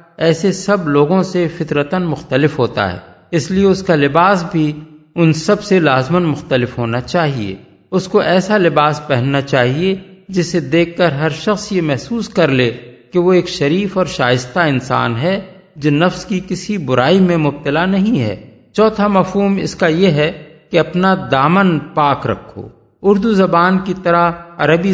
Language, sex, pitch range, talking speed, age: Urdu, male, 135-175 Hz, 165 wpm, 50-69